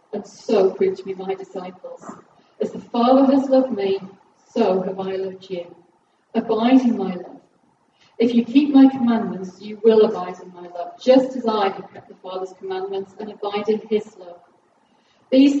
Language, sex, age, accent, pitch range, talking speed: English, female, 40-59, British, 190-255 Hz, 180 wpm